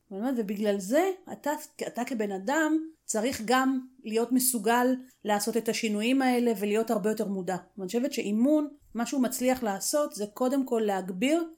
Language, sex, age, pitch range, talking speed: Hebrew, female, 30-49, 200-255 Hz, 150 wpm